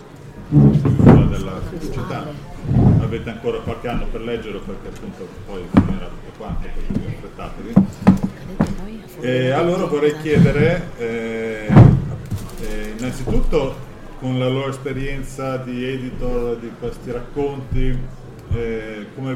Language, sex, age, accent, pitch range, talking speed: Italian, male, 40-59, native, 110-135 Hz, 95 wpm